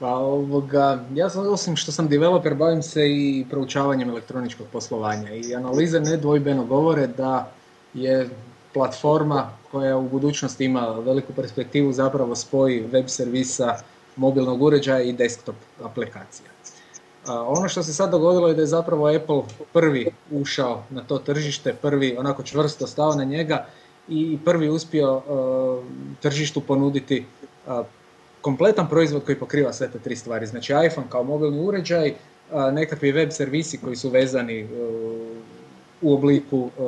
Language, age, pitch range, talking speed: Croatian, 20-39, 120-150 Hz, 135 wpm